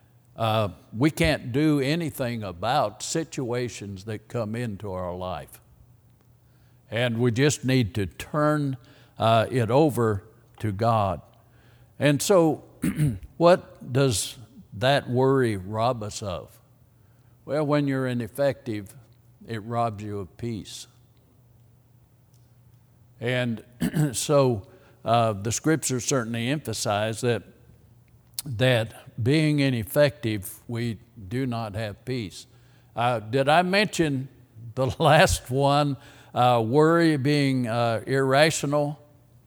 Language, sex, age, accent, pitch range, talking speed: English, male, 60-79, American, 115-135 Hz, 105 wpm